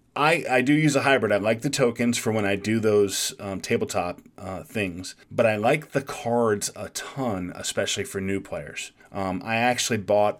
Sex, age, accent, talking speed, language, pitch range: male, 30-49, American, 195 wpm, English, 95-115 Hz